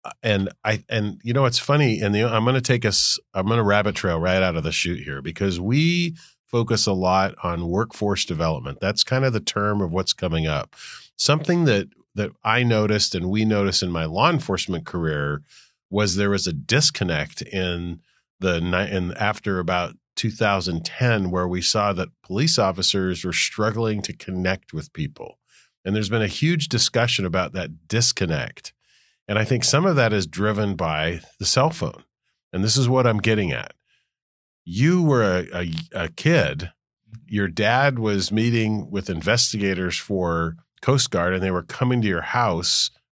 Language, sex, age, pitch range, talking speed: English, male, 40-59, 90-115 Hz, 180 wpm